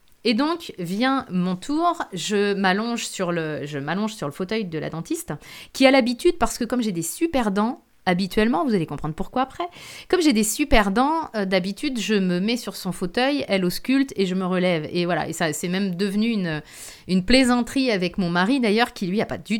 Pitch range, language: 180-235 Hz, French